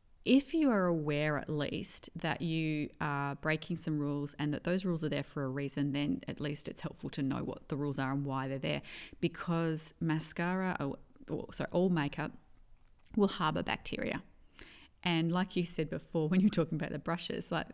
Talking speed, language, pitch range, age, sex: 190 wpm, English, 150-175 Hz, 30-49, female